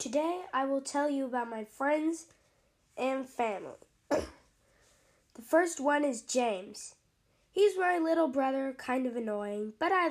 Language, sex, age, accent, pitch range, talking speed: English, female, 10-29, American, 235-300 Hz, 140 wpm